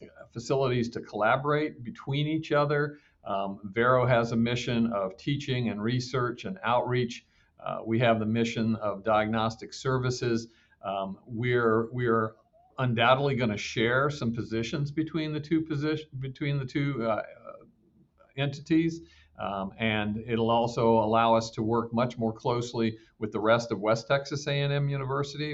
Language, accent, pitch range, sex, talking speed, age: English, American, 110-130 Hz, male, 145 wpm, 50-69